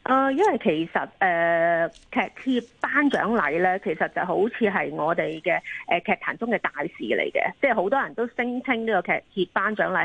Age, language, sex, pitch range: 30-49, Chinese, female, 190-275 Hz